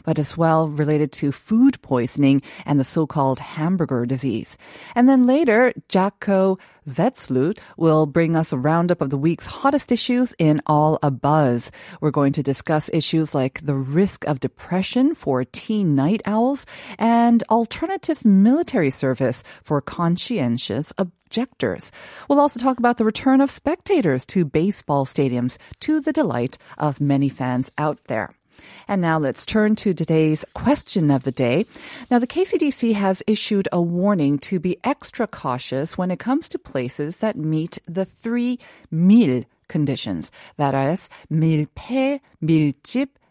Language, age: Korean, 30-49